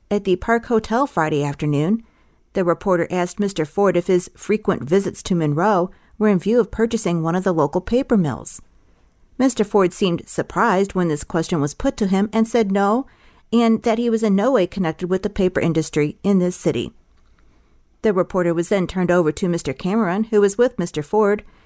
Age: 40-59